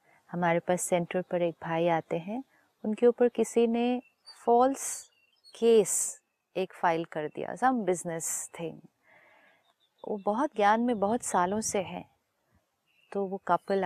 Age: 30-49